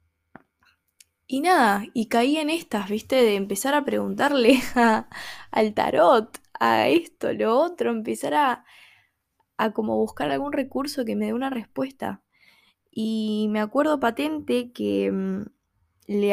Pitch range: 200-260 Hz